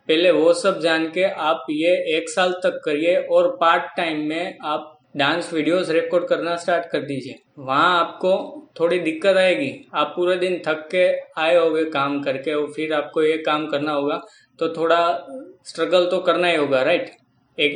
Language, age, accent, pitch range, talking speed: Hindi, 20-39, native, 150-175 Hz, 180 wpm